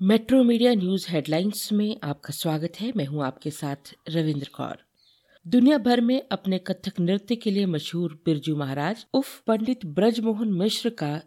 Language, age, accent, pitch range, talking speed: Hindi, 50-69, native, 160-220 Hz, 160 wpm